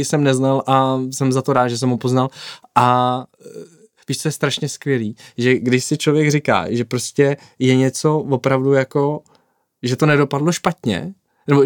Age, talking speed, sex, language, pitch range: 20-39, 170 wpm, male, Czech, 125-150 Hz